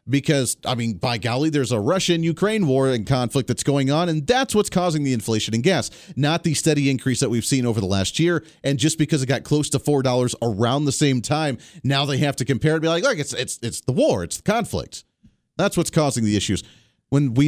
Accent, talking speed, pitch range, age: American, 230 wpm, 120-150 Hz, 40-59